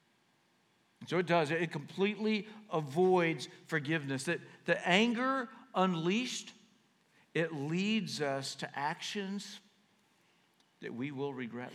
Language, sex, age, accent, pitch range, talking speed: English, male, 60-79, American, 135-200 Hz, 100 wpm